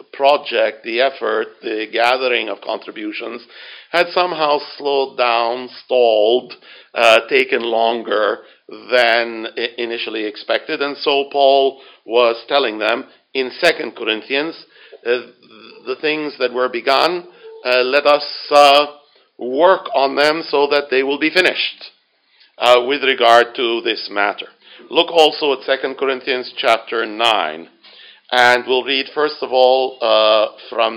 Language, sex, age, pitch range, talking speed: English, male, 60-79, 125-160 Hz, 130 wpm